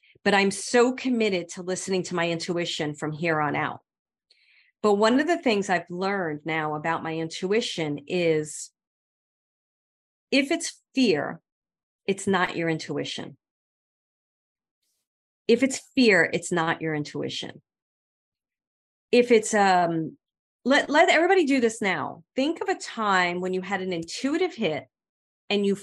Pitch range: 170-235 Hz